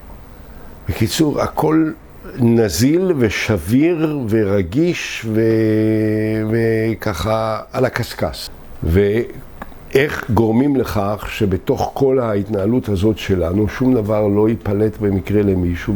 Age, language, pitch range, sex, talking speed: 60-79, Hebrew, 90-115 Hz, male, 85 wpm